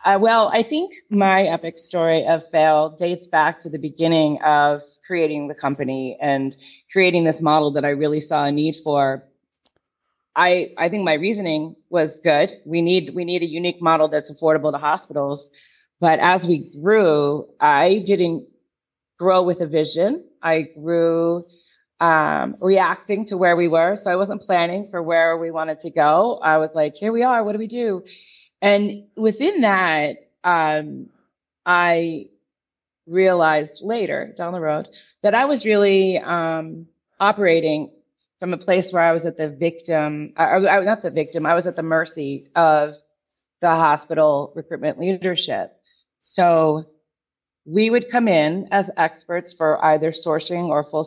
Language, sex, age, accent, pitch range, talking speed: English, female, 30-49, American, 155-185 Hz, 160 wpm